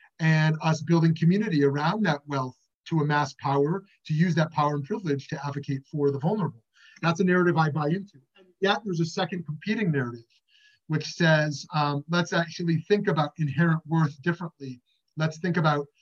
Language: English